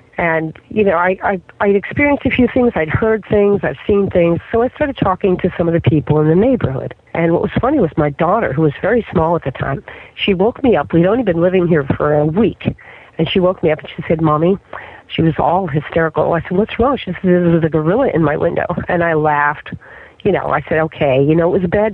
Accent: American